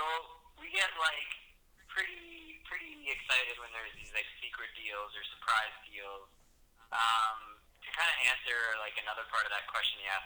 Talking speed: 170 wpm